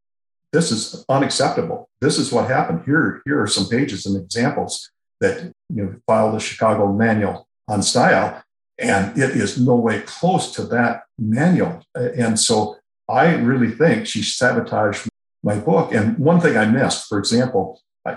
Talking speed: 160 wpm